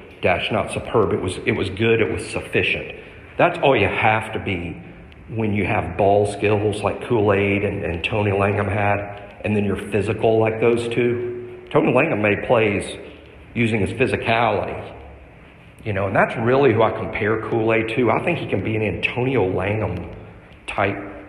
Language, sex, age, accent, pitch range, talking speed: English, male, 50-69, American, 100-115 Hz, 175 wpm